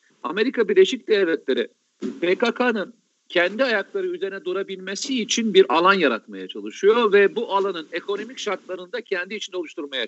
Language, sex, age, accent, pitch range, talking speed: Turkish, male, 50-69, native, 170-260 Hz, 130 wpm